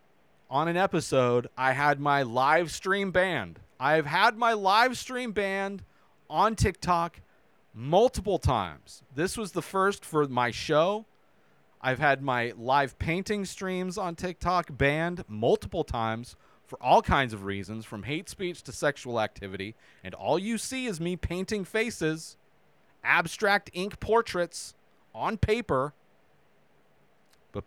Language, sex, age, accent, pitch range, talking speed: English, male, 30-49, American, 125-175 Hz, 135 wpm